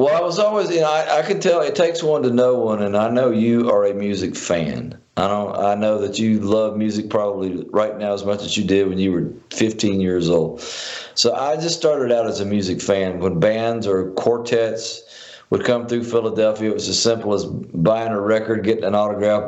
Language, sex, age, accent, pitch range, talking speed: English, male, 50-69, American, 100-125 Hz, 230 wpm